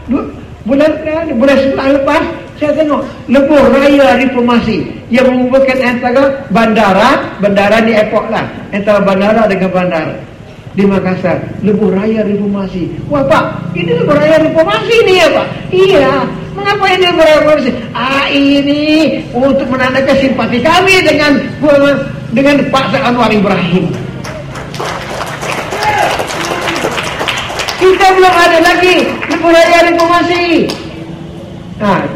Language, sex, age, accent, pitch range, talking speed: English, male, 50-69, Indonesian, 215-300 Hz, 105 wpm